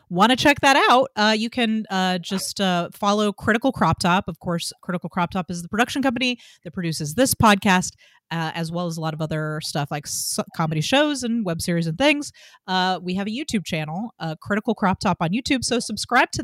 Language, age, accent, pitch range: English, 30-49, American, 175-235 Hz